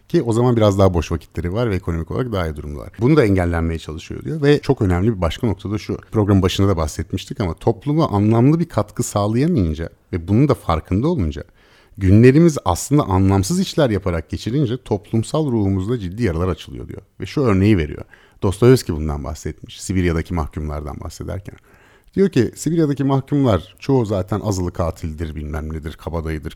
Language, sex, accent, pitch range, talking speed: Turkish, male, native, 85-120 Hz, 170 wpm